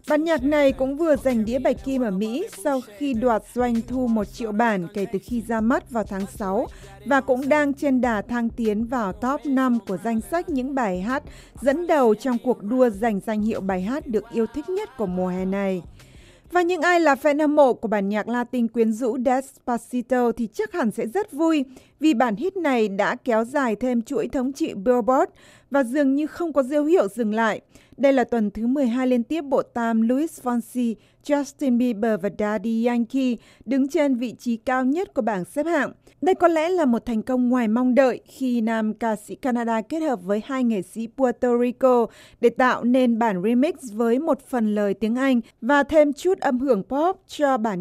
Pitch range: 225-280 Hz